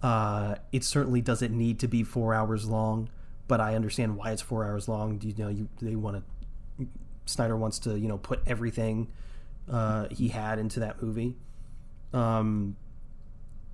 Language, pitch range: English, 105-130 Hz